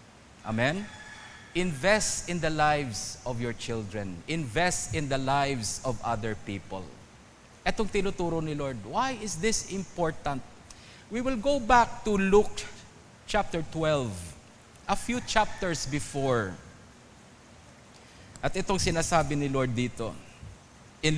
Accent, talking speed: Filipino, 120 wpm